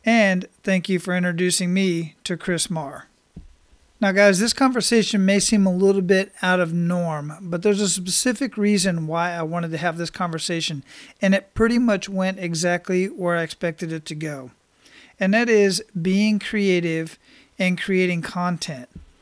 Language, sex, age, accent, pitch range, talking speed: English, male, 40-59, American, 170-200 Hz, 165 wpm